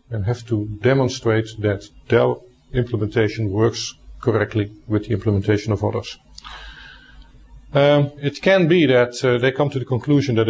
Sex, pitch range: male, 105-130 Hz